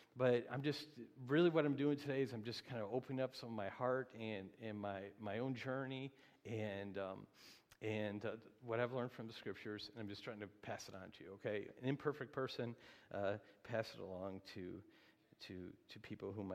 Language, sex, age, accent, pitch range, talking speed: English, male, 50-69, American, 125-185 Hz, 210 wpm